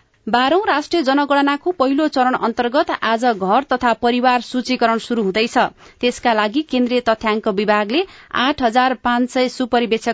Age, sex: 30-49, female